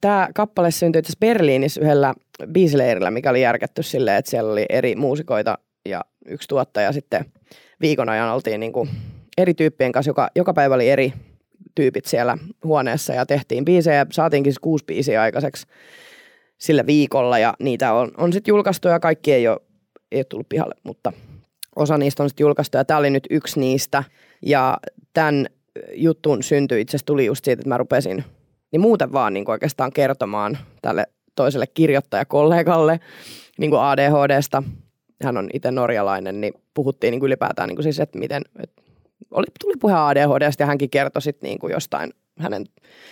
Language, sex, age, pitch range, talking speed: Finnish, female, 20-39, 135-165 Hz, 170 wpm